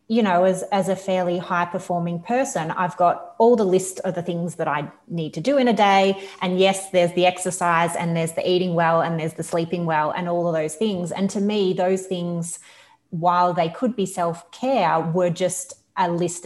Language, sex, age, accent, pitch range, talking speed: English, female, 30-49, Australian, 165-190 Hz, 210 wpm